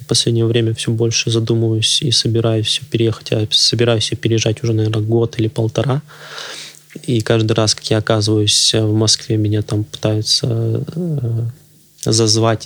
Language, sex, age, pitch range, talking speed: Russian, male, 20-39, 110-125 Hz, 135 wpm